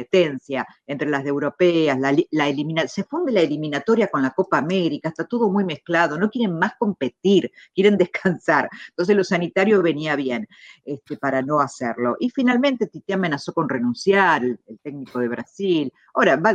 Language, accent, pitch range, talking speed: Spanish, Argentinian, 145-195 Hz, 170 wpm